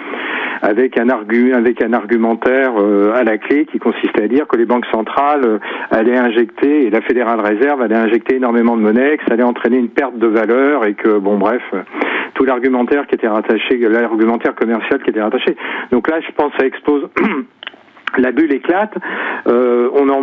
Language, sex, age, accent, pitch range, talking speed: French, male, 50-69, French, 115-145 Hz, 195 wpm